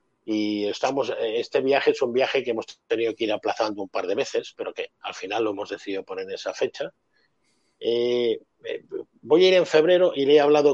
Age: 50-69